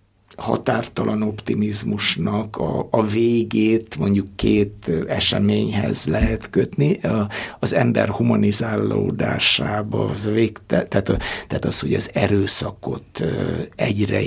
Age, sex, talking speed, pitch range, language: 60-79, male, 85 wpm, 105-115 Hz, Hungarian